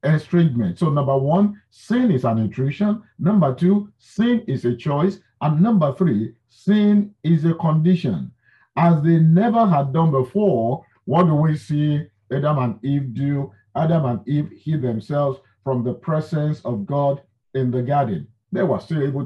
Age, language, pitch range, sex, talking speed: 50-69, English, 130-180 Hz, male, 160 wpm